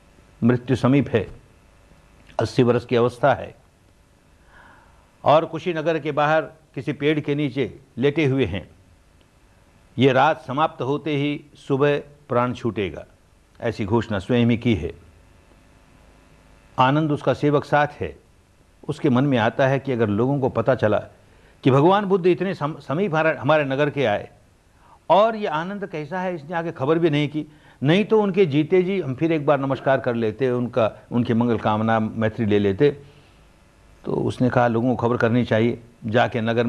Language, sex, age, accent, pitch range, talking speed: Hindi, male, 60-79, native, 110-150 Hz, 160 wpm